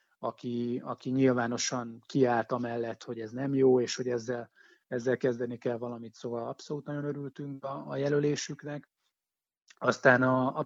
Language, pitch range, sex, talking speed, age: Hungarian, 125-140 Hz, male, 145 wpm, 30-49